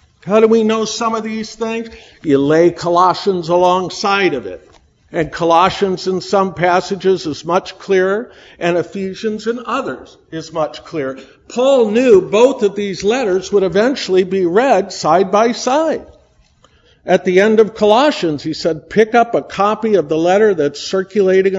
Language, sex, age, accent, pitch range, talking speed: English, male, 50-69, American, 170-225 Hz, 160 wpm